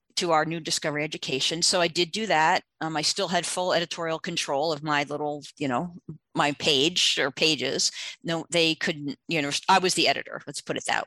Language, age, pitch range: English, 40-59, 165-220 Hz